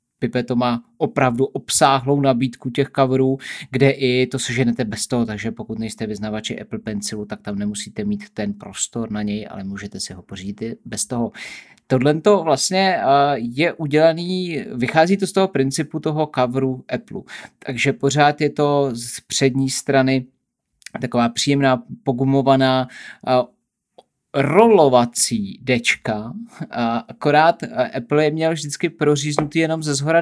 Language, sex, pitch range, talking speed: Czech, male, 120-145 Hz, 135 wpm